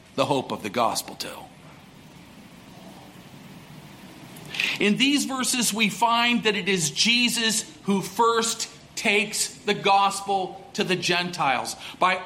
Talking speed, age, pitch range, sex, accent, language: 120 wpm, 50-69, 175-220 Hz, male, American, English